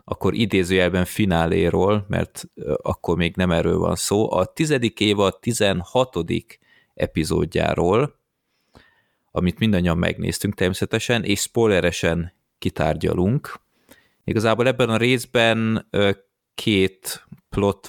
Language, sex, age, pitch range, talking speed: Hungarian, male, 30-49, 90-110 Hz, 95 wpm